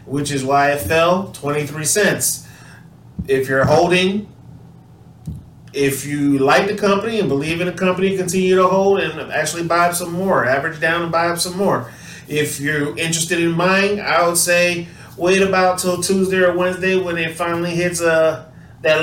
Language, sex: English, male